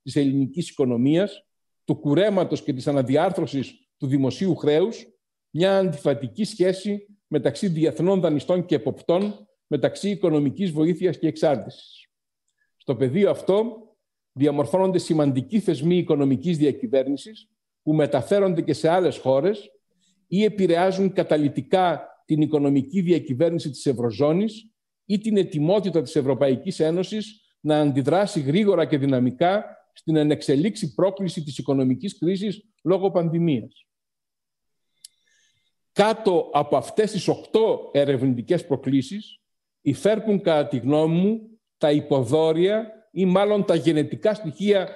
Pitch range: 150-200 Hz